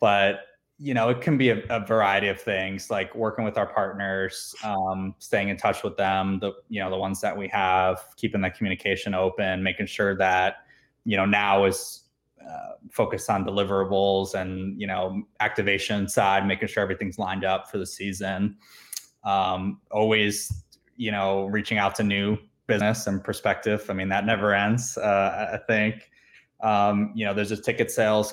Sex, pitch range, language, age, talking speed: male, 95-105 Hz, English, 20-39, 180 wpm